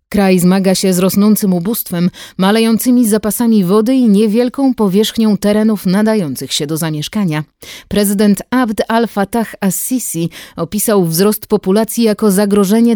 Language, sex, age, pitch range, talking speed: Polish, female, 30-49, 170-220 Hz, 120 wpm